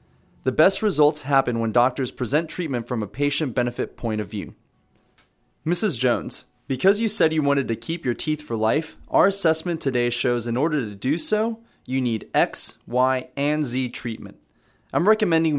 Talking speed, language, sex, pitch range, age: 175 wpm, English, male, 120-160 Hz, 30-49